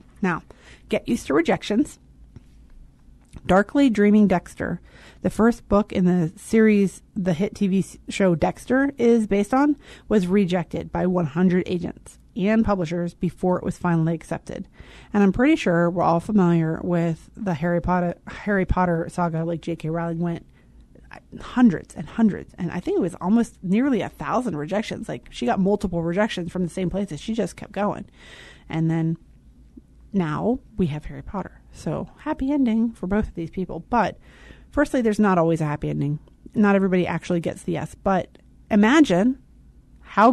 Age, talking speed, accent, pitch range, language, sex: 30-49, 165 wpm, American, 175-220 Hz, English, female